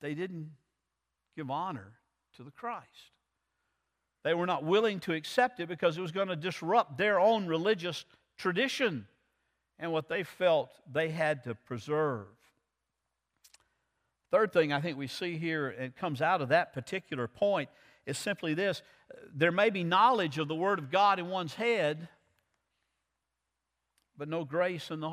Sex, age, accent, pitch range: male, 50-69, American, 140-190 Hz